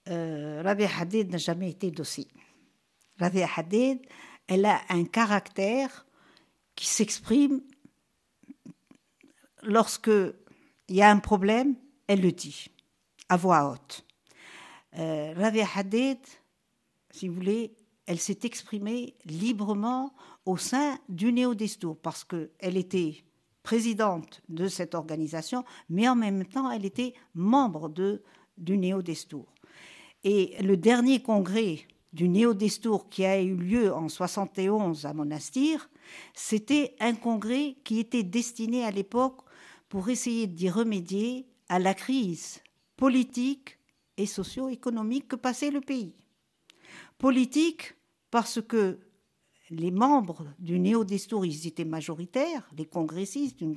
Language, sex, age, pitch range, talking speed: French, female, 60-79, 180-245 Hz, 120 wpm